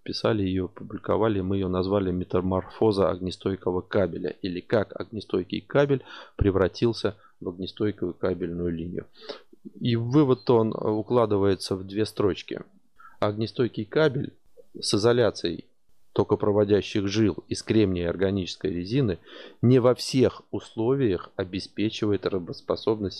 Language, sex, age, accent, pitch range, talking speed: Russian, male, 30-49, native, 95-120 Hz, 110 wpm